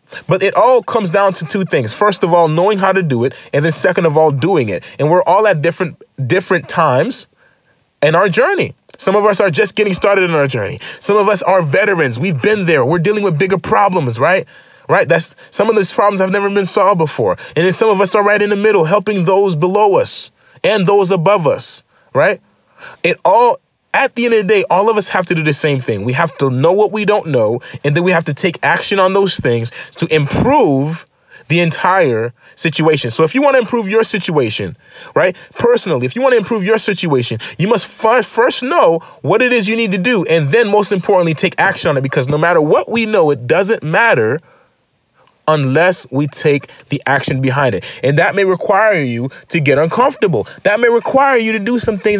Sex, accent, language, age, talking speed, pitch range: male, American, English, 30-49, 225 wpm, 160-215 Hz